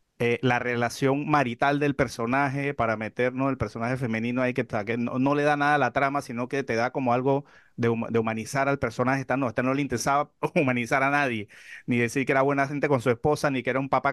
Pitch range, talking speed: 120-145 Hz, 250 wpm